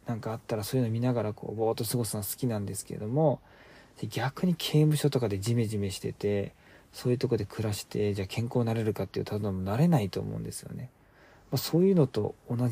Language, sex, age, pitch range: Japanese, male, 40-59, 105-145 Hz